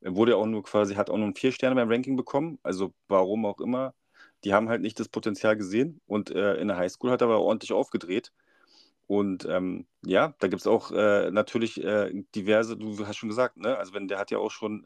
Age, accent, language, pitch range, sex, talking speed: 30-49, German, German, 105-125 Hz, male, 230 wpm